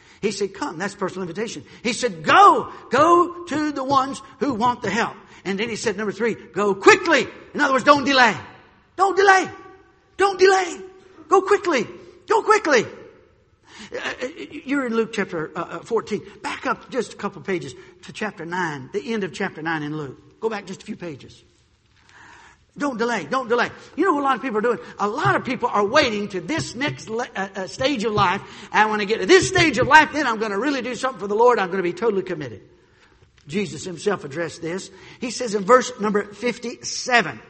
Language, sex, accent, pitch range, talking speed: English, male, American, 180-280 Hz, 205 wpm